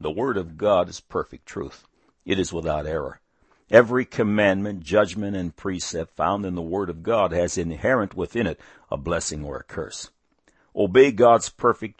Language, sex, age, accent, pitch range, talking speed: English, male, 60-79, American, 85-115 Hz, 170 wpm